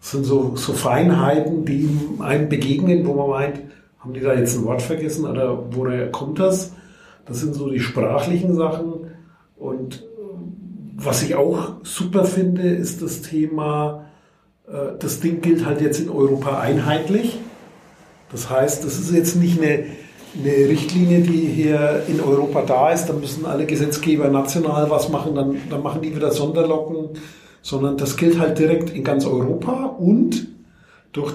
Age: 50-69